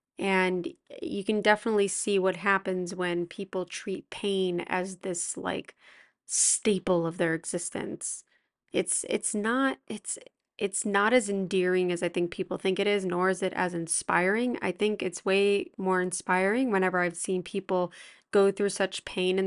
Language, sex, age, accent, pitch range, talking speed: English, female, 20-39, American, 180-205 Hz, 165 wpm